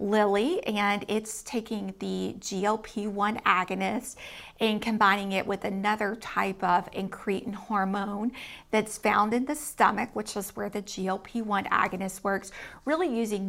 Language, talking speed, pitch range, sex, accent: English, 135 wpm, 195-220 Hz, female, American